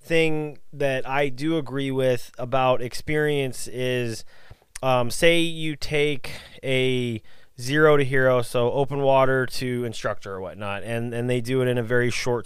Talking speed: 165 wpm